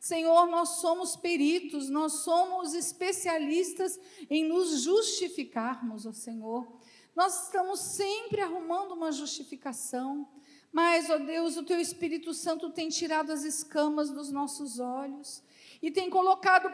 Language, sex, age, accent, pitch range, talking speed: Portuguese, female, 50-69, Brazilian, 305-375 Hz, 125 wpm